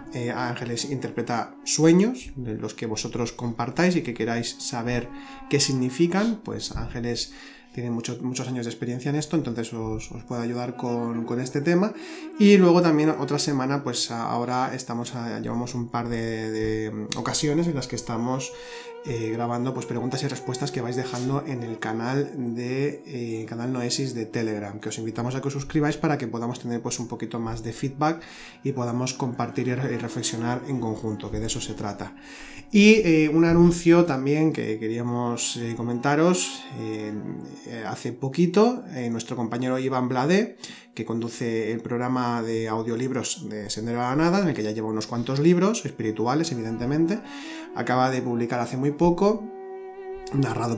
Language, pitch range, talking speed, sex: Spanish, 115-155 Hz, 170 wpm, male